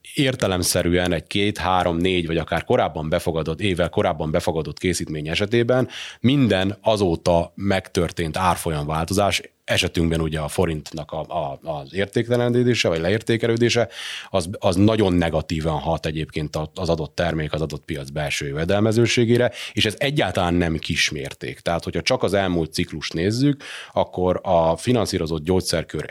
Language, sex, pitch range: Hungarian, male, 85-105 Hz